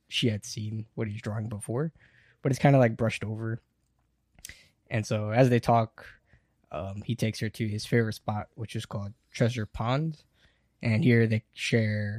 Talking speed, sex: 175 wpm, male